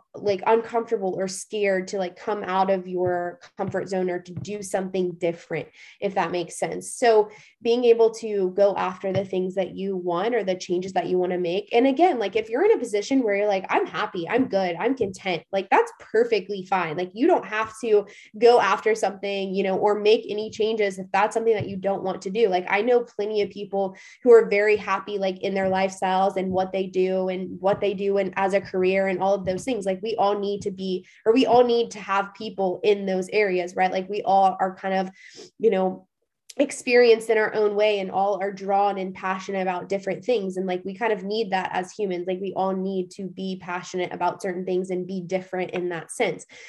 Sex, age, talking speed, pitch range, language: female, 20-39, 230 wpm, 185-215 Hz, English